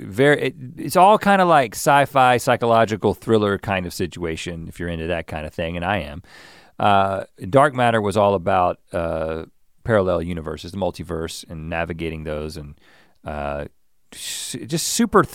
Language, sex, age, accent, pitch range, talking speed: English, male, 40-59, American, 90-115 Hz, 170 wpm